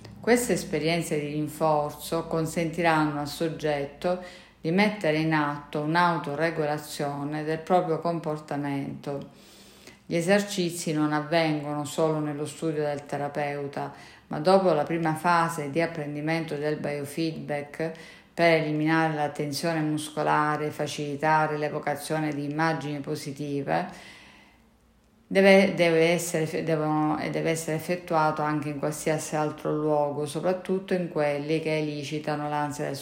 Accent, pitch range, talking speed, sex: native, 150-165 Hz, 110 wpm, female